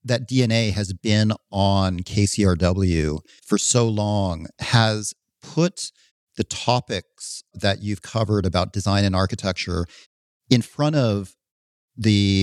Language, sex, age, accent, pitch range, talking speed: English, male, 40-59, American, 95-115 Hz, 115 wpm